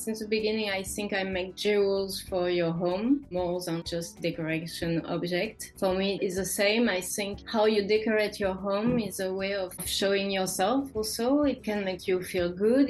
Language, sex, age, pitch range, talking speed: English, female, 20-39, 190-220 Hz, 190 wpm